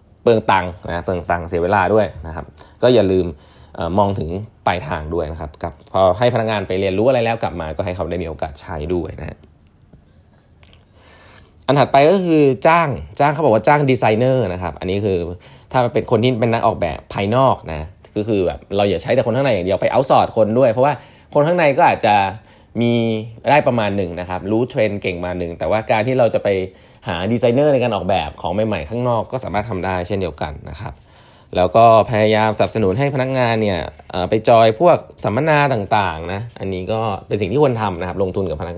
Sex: male